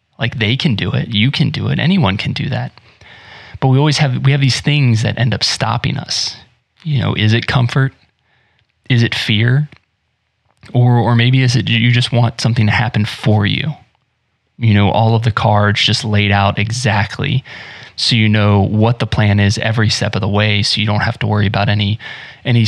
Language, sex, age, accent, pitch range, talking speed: English, male, 20-39, American, 110-135 Hz, 205 wpm